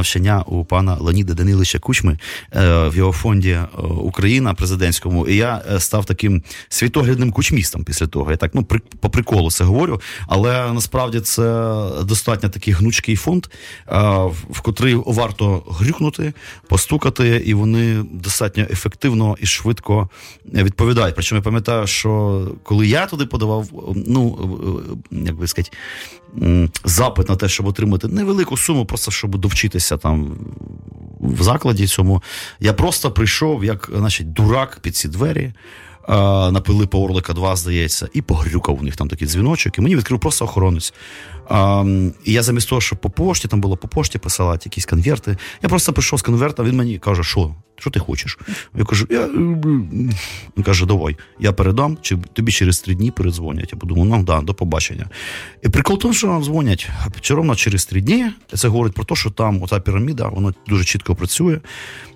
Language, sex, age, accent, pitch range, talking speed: Ukrainian, male, 30-49, native, 90-115 Hz, 165 wpm